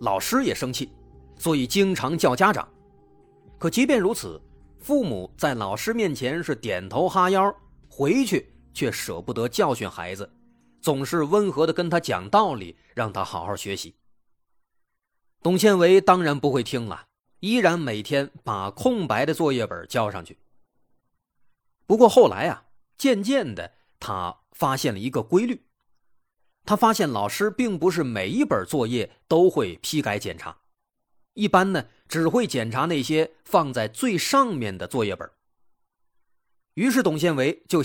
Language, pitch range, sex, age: Chinese, 135-215 Hz, male, 30-49